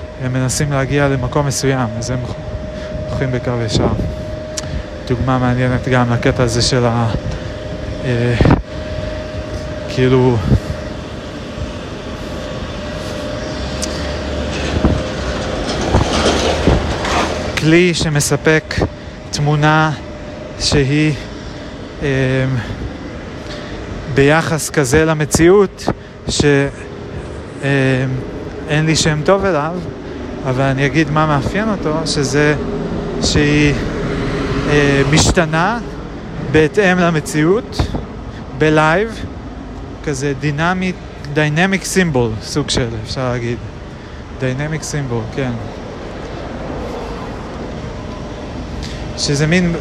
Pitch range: 110-155 Hz